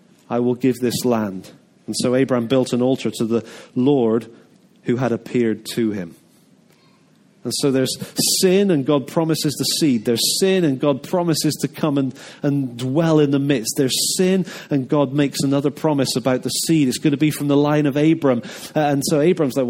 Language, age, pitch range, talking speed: English, 30-49, 125-155 Hz, 195 wpm